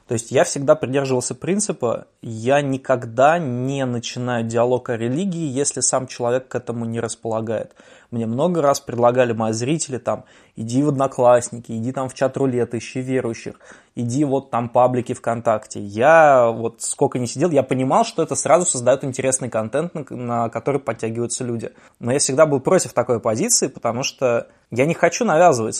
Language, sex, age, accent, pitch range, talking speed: Russian, male, 20-39, native, 120-140 Hz, 165 wpm